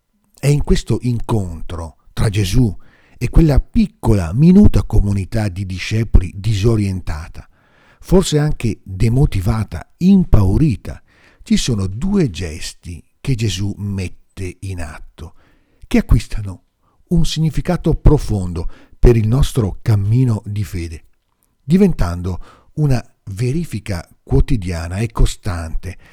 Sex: male